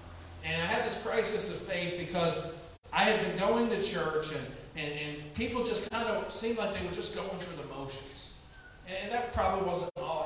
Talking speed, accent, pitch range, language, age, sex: 205 wpm, American, 135-195 Hz, English, 40-59, male